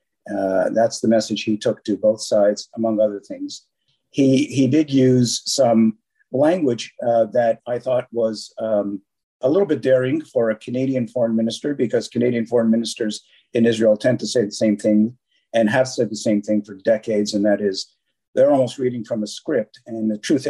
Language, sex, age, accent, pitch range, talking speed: English, male, 50-69, American, 105-125 Hz, 190 wpm